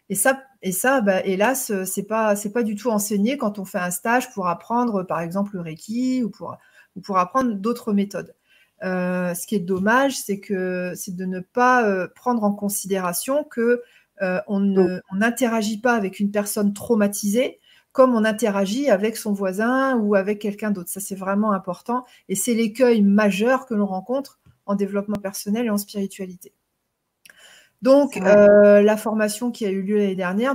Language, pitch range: French, 195-230 Hz